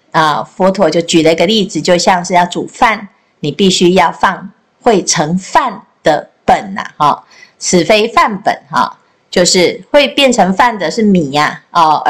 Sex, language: female, Chinese